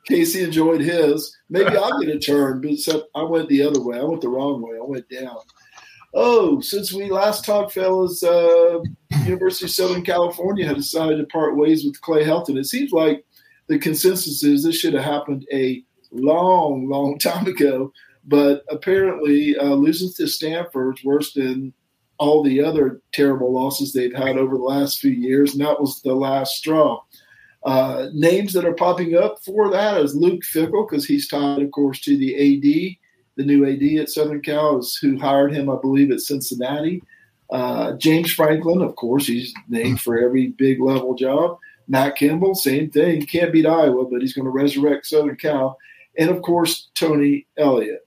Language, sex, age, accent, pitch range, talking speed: English, male, 50-69, American, 135-170 Hz, 185 wpm